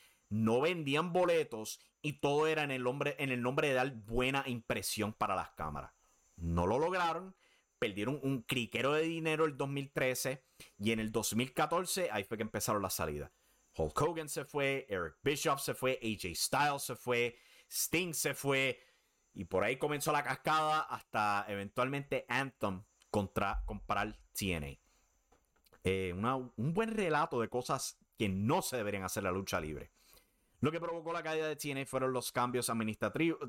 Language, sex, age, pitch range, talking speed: English, male, 30-49, 105-155 Hz, 165 wpm